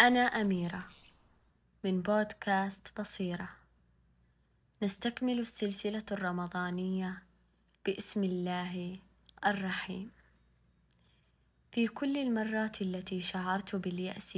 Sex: female